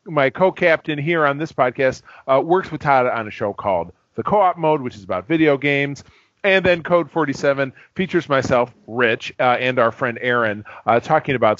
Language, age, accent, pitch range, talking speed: English, 40-59, American, 120-150 Hz, 190 wpm